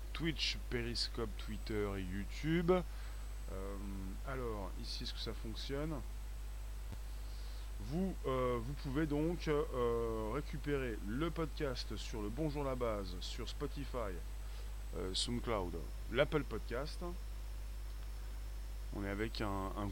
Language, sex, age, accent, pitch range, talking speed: French, male, 30-49, French, 105-140 Hz, 110 wpm